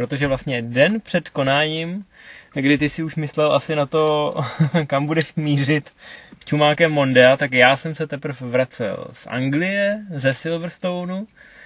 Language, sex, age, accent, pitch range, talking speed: Czech, male, 20-39, native, 125-145 Hz, 150 wpm